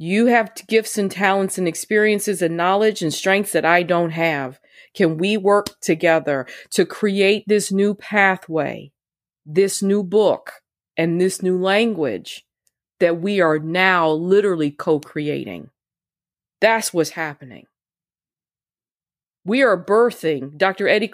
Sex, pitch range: female, 160-205 Hz